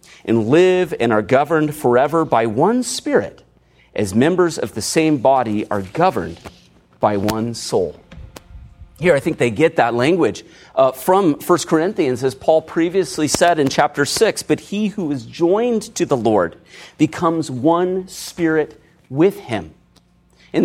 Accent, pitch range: American, 125-190 Hz